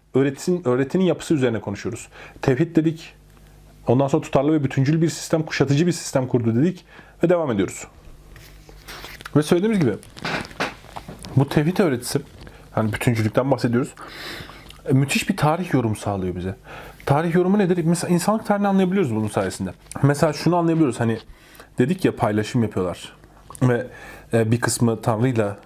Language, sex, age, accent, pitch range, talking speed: Turkish, male, 30-49, native, 115-160 Hz, 140 wpm